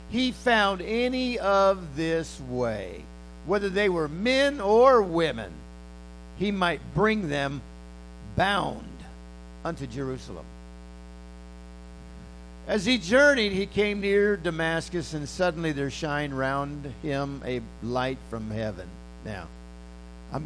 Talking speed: 110 wpm